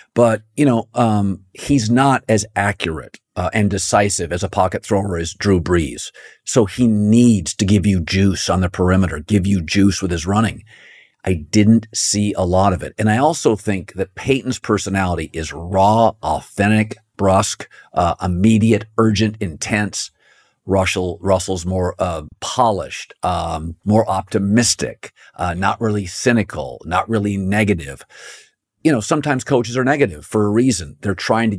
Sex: male